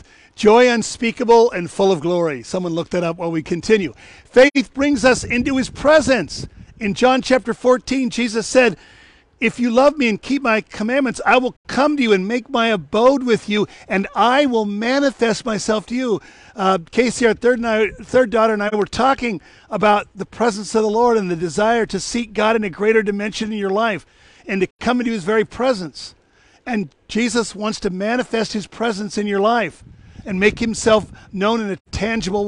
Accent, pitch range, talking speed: American, 205-245 Hz, 190 wpm